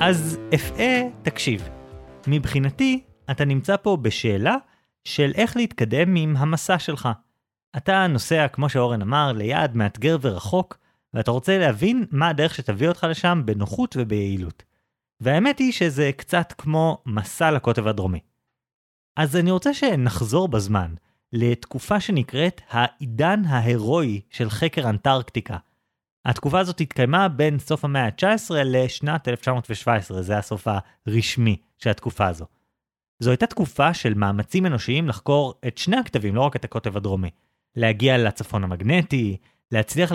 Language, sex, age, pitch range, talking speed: Hebrew, male, 30-49, 110-155 Hz, 130 wpm